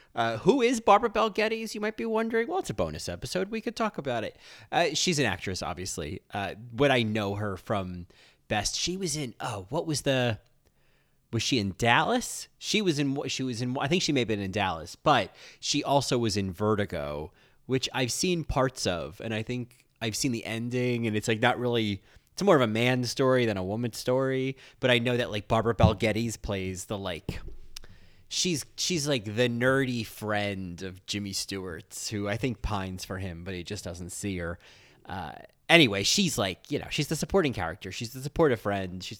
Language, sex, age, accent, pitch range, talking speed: English, male, 30-49, American, 95-140 Hz, 210 wpm